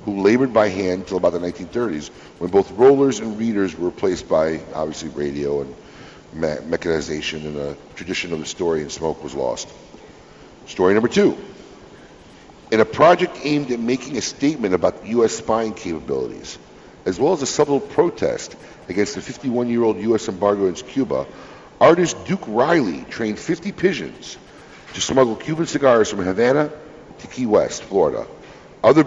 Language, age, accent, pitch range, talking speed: English, 60-79, American, 95-130 Hz, 155 wpm